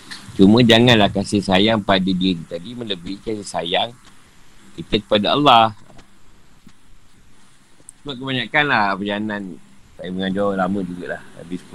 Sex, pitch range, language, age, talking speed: male, 100-130 Hz, Malay, 50-69, 115 wpm